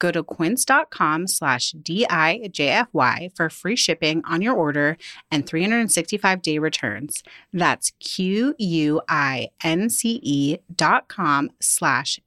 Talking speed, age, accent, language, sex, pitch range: 85 wpm, 30-49, American, English, female, 155-225 Hz